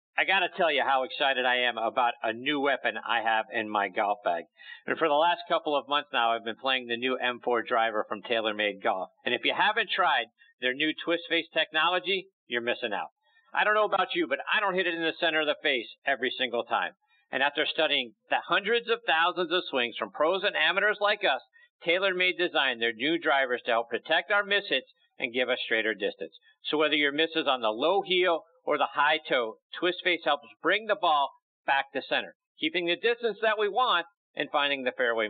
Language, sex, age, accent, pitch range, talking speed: English, male, 50-69, American, 125-195 Hz, 225 wpm